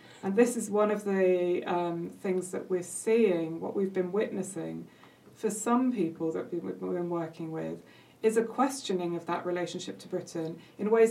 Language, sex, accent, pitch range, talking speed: English, female, British, 180-225 Hz, 180 wpm